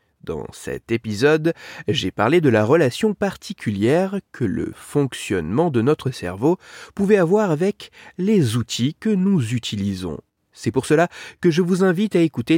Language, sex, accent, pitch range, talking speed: French, male, French, 110-185 Hz, 155 wpm